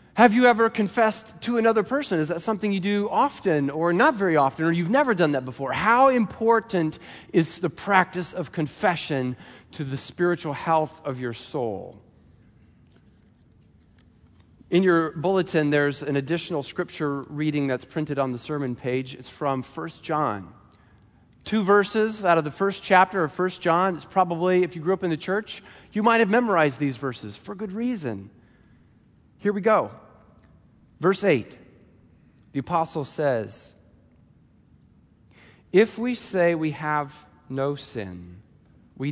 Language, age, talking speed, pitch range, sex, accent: English, 40-59, 150 wpm, 125-185 Hz, male, American